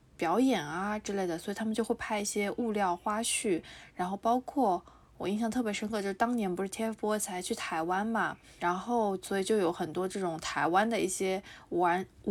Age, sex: 20-39, female